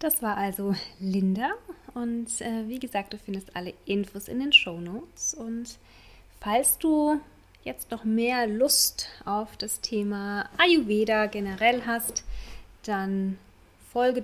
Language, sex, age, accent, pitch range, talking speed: German, female, 20-39, German, 205-250 Hz, 130 wpm